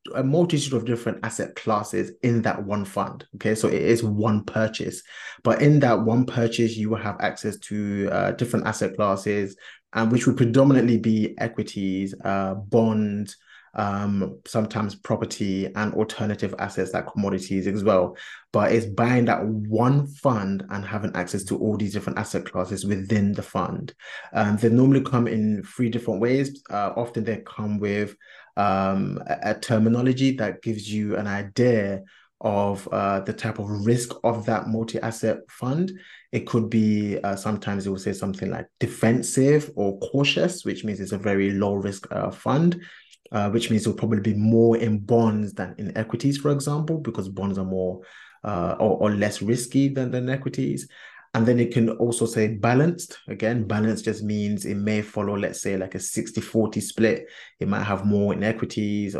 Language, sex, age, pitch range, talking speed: English, male, 20-39, 100-115 Hz, 175 wpm